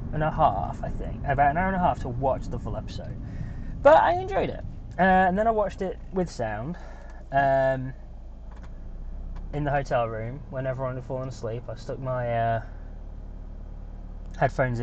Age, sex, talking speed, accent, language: 20-39, male, 175 wpm, British, English